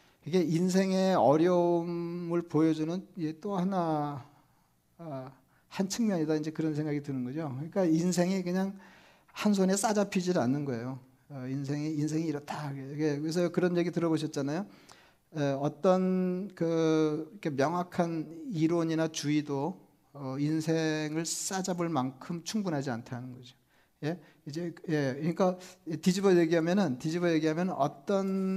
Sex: male